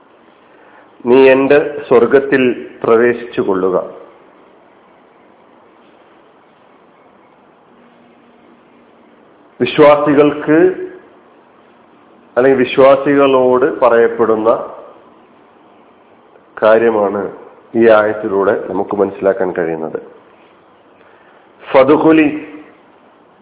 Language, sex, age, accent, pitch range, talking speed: Malayalam, male, 40-59, native, 125-160 Hz, 40 wpm